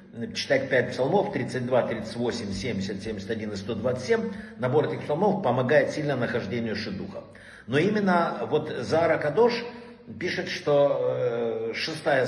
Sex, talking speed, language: male, 115 wpm, Russian